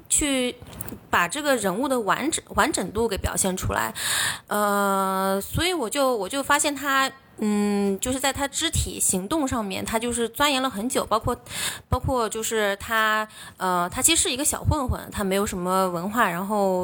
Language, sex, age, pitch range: Chinese, female, 20-39, 195-265 Hz